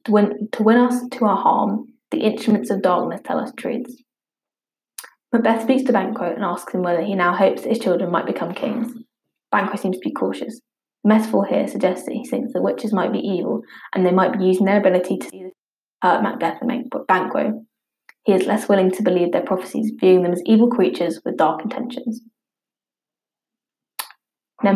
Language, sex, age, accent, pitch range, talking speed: English, female, 20-39, British, 190-245 Hz, 190 wpm